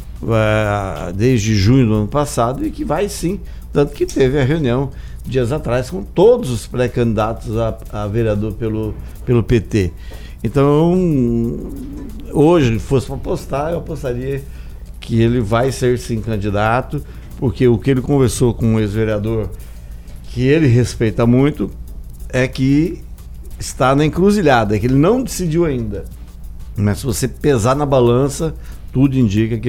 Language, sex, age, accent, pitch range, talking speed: Portuguese, male, 60-79, Brazilian, 105-140 Hz, 145 wpm